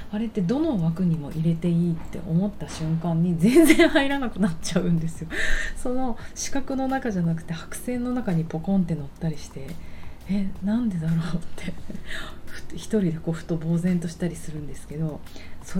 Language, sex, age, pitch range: Japanese, female, 30-49, 160-200 Hz